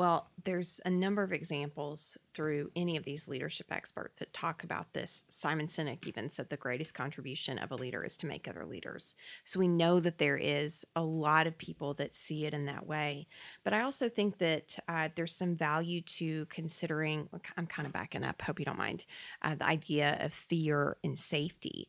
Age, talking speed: 30-49, 205 wpm